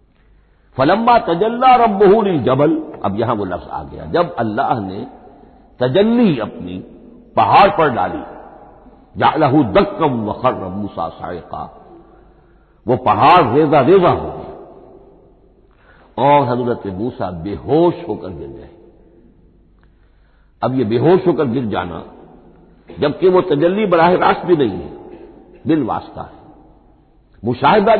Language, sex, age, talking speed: Hindi, male, 60-79, 115 wpm